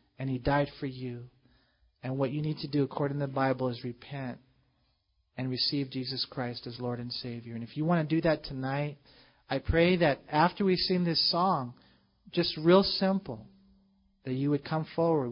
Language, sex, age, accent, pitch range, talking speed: English, male, 40-59, American, 125-160 Hz, 190 wpm